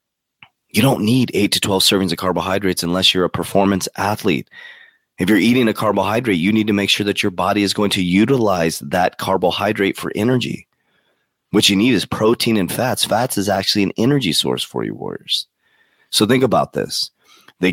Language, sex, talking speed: English, male, 190 wpm